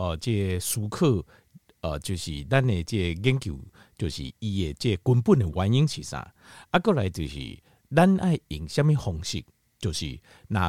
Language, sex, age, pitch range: Chinese, male, 50-69, 90-140 Hz